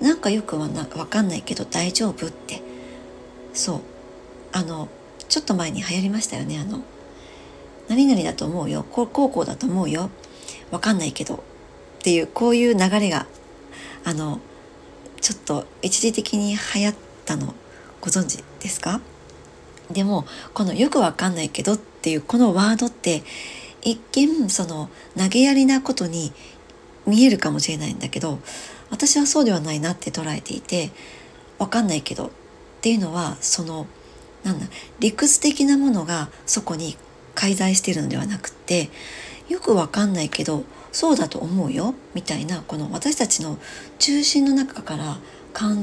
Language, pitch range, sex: Japanese, 155-230 Hz, male